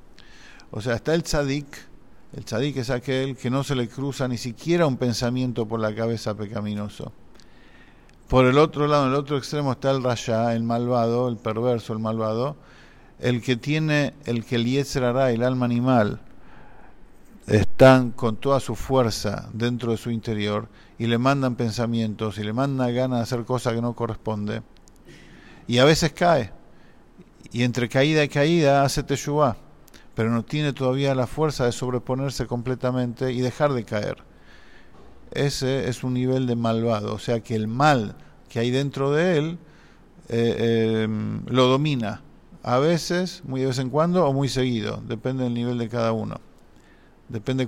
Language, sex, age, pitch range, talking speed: English, male, 50-69, 115-135 Hz, 165 wpm